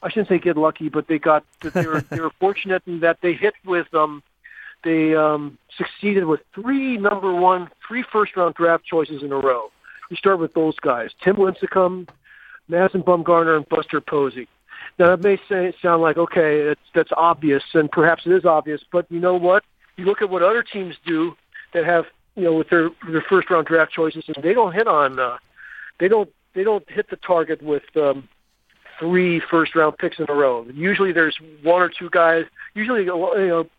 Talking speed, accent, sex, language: 205 wpm, American, male, English